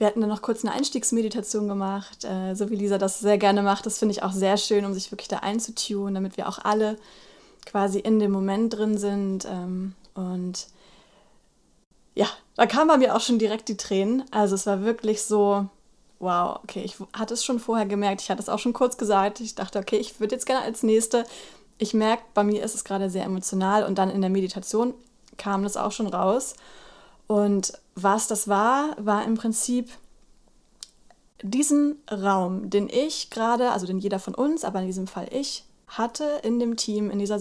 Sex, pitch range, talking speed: female, 195-225 Hz, 195 wpm